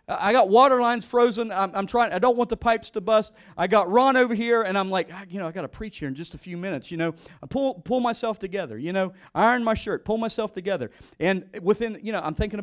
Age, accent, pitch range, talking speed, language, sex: 40-59, American, 175-220 Hz, 260 wpm, English, male